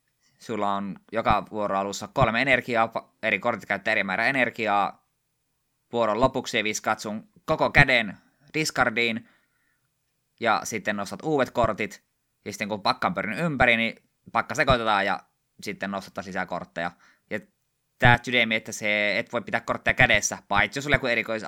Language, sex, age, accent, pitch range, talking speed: Finnish, male, 20-39, native, 100-125 Hz, 135 wpm